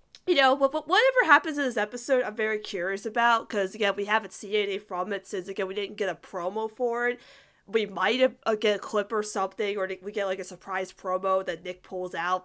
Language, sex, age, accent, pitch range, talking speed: English, female, 20-39, American, 195-245 Hz, 235 wpm